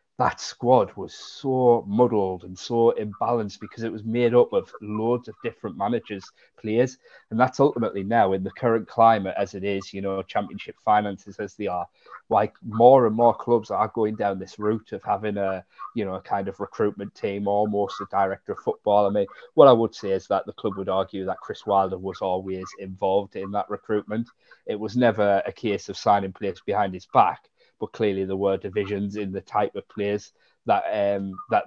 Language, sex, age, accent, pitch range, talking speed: English, male, 30-49, British, 95-110 Hz, 205 wpm